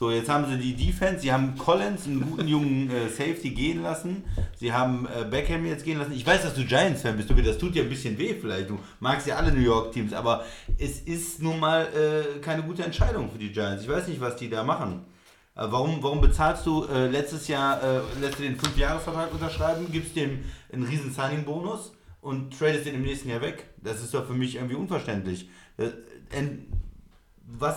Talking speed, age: 215 wpm, 30-49